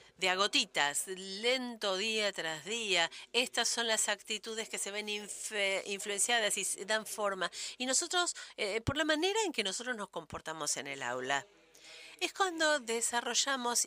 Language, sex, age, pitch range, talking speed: English, female, 50-69, 175-235 Hz, 145 wpm